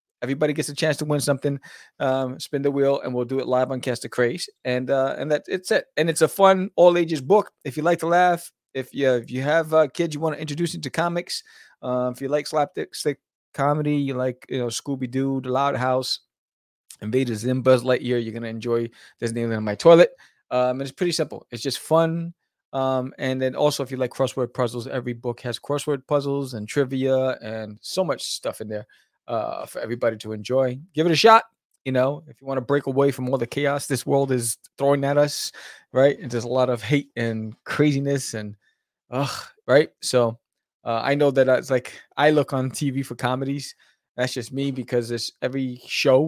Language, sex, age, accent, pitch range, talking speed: English, male, 20-39, American, 125-145 Hz, 215 wpm